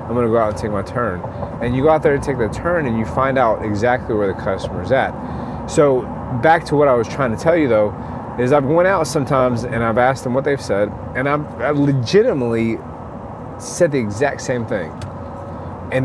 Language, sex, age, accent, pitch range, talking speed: English, male, 30-49, American, 115-145 Hz, 220 wpm